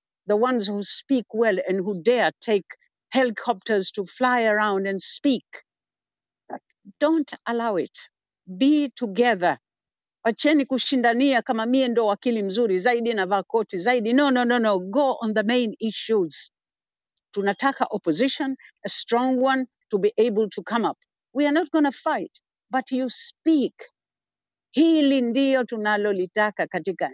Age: 60-79